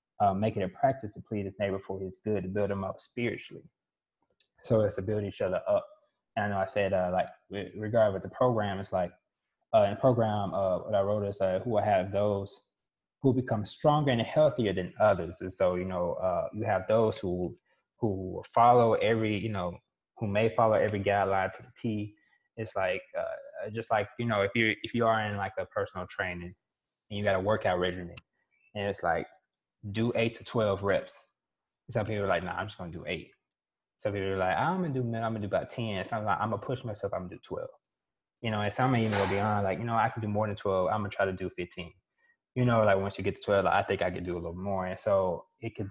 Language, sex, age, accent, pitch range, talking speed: English, male, 20-39, American, 95-115 Hz, 250 wpm